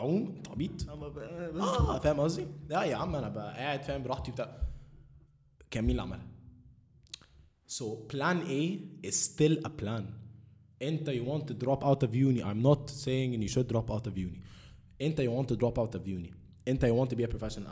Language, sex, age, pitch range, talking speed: Arabic, male, 20-39, 115-145 Hz, 150 wpm